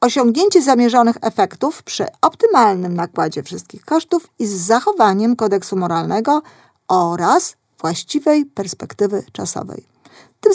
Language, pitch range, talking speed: Polish, 200-275 Hz, 100 wpm